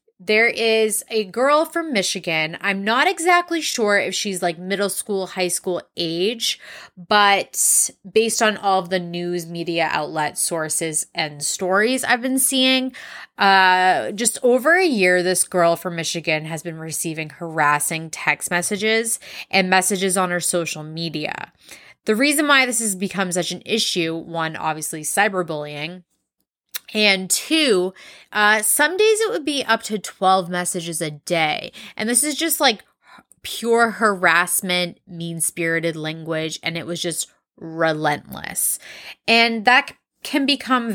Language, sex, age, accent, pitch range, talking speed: English, female, 20-39, American, 170-230 Hz, 140 wpm